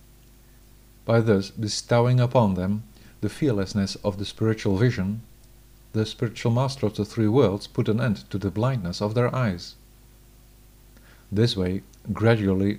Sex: male